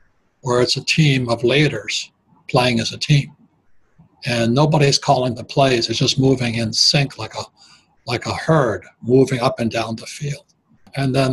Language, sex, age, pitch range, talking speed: English, male, 60-79, 120-145 Hz, 175 wpm